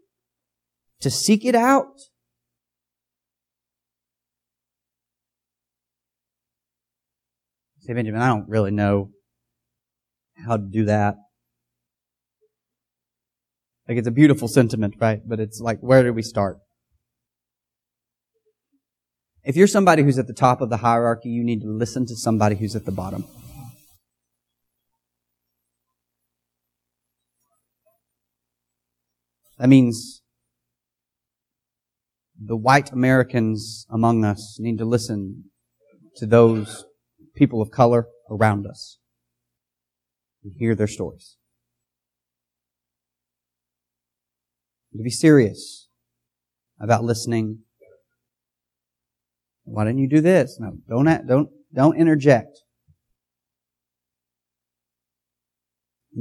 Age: 30-49